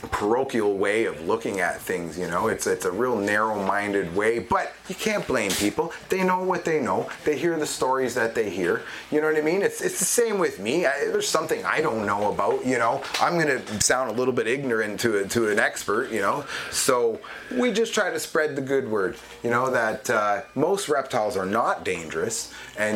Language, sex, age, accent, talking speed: English, male, 30-49, American, 220 wpm